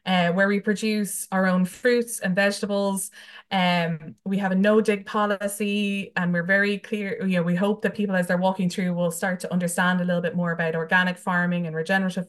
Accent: Irish